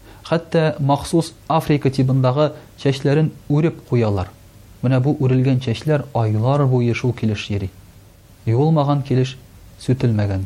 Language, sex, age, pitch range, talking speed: Russian, male, 40-59, 105-140 Hz, 115 wpm